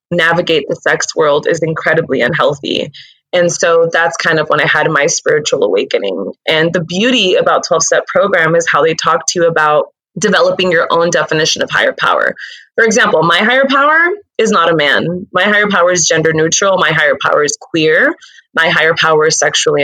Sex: female